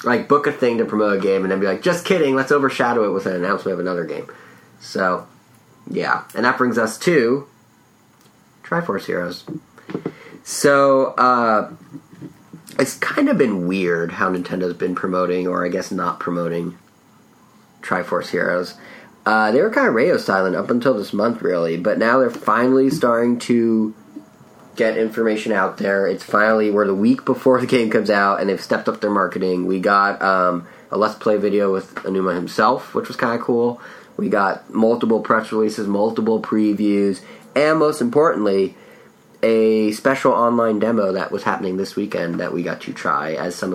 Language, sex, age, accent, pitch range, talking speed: English, male, 30-49, American, 95-120 Hz, 175 wpm